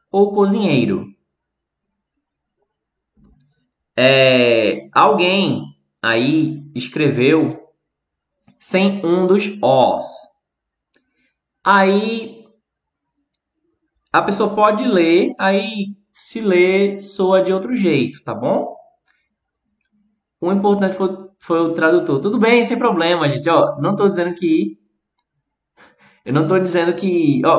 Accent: Brazilian